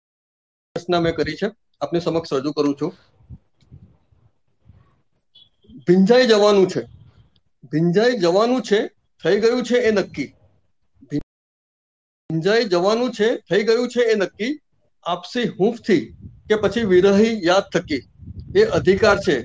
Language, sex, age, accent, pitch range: Gujarati, male, 50-69, native, 170-235 Hz